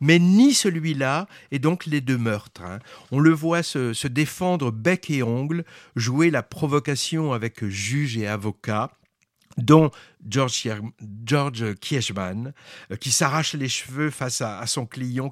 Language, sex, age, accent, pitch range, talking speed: French, male, 50-69, French, 130-170 Hz, 140 wpm